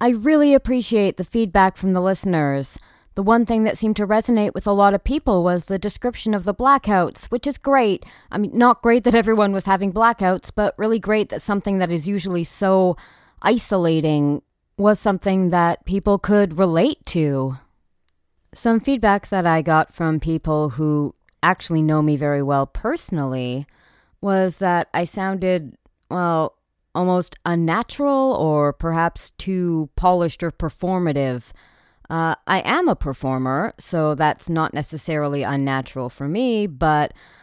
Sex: female